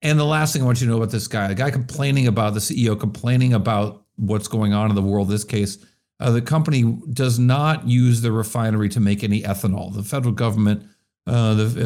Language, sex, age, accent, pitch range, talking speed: English, male, 50-69, American, 105-125 Hz, 225 wpm